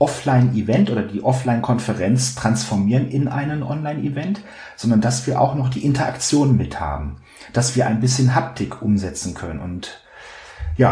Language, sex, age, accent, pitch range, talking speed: German, male, 40-59, German, 110-145 Hz, 160 wpm